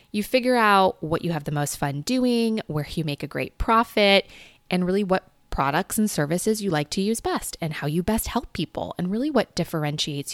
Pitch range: 155-215 Hz